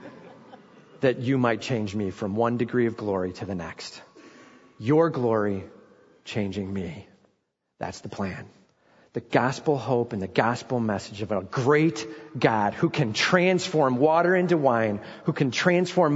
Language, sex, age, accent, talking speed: English, male, 40-59, American, 150 wpm